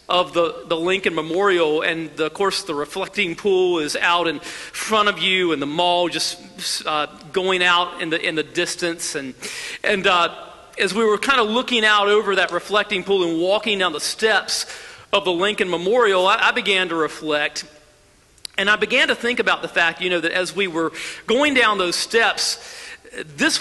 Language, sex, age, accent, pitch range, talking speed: English, male, 40-59, American, 180-230 Hz, 195 wpm